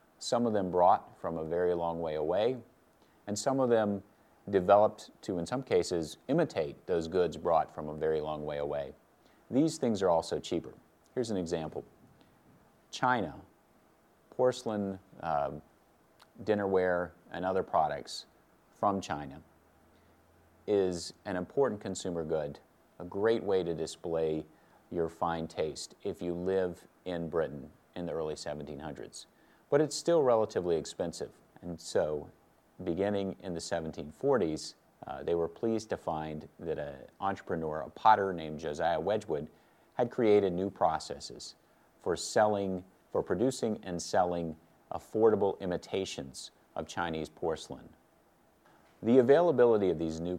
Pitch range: 80-100 Hz